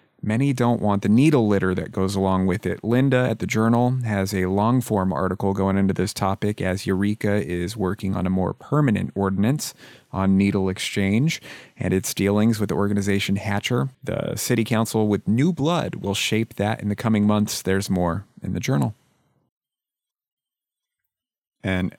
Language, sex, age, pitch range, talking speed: English, male, 30-49, 95-110 Hz, 165 wpm